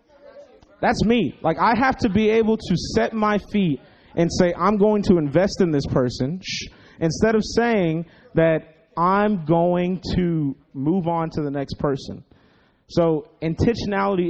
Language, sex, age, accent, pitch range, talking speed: English, male, 30-49, American, 135-180 Hz, 150 wpm